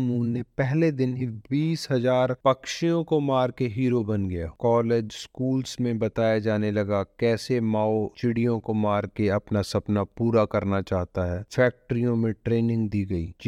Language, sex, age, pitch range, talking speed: Hindi, male, 30-49, 110-145 Hz, 65 wpm